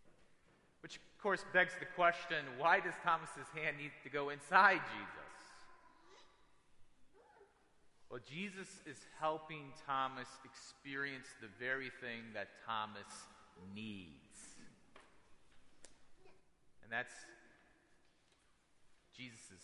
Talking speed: 90 wpm